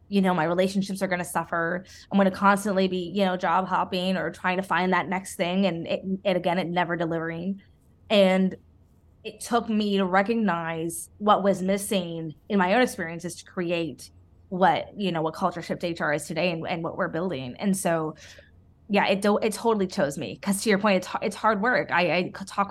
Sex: female